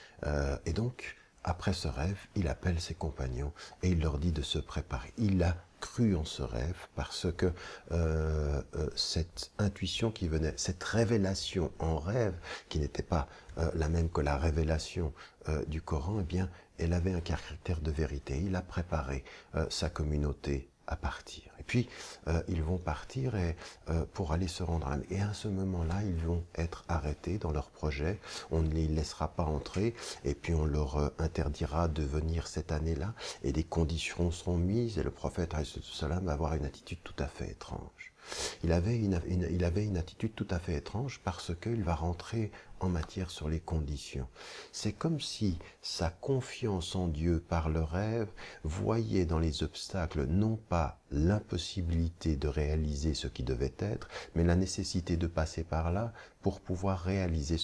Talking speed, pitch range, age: 180 wpm, 80-95 Hz, 50-69